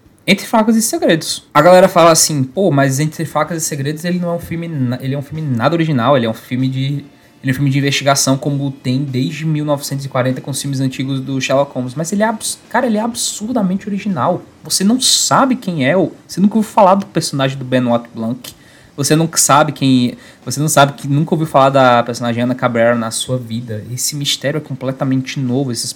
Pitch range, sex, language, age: 120-155 Hz, male, Portuguese, 20-39